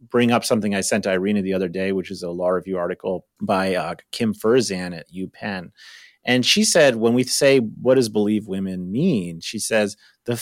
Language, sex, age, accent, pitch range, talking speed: English, male, 30-49, American, 100-130 Hz, 205 wpm